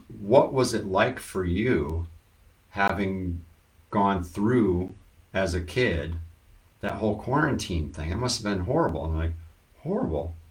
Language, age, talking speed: English, 50-69, 135 wpm